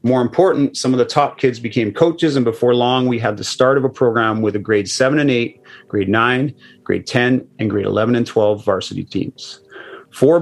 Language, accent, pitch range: English, American, 115-135 Hz